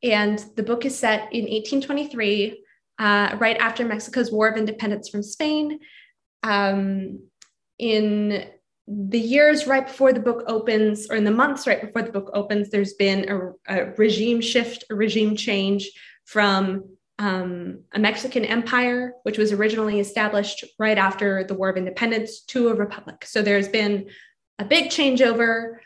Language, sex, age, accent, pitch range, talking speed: English, female, 20-39, American, 205-250 Hz, 155 wpm